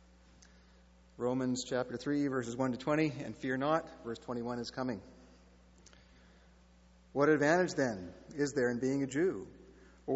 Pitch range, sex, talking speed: 110-145 Hz, male, 140 wpm